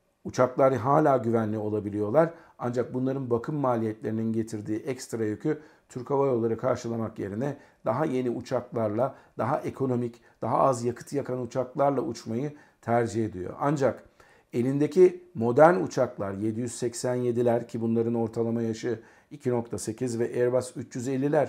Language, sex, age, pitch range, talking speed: Turkish, male, 50-69, 115-140 Hz, 115 wpm